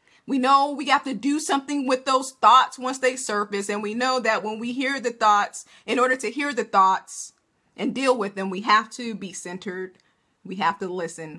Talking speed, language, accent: 215 wpm, English, American